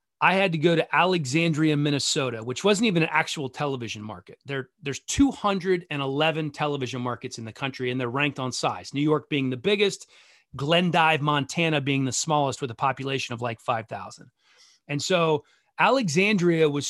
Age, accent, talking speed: 30-49, American, 165 wpm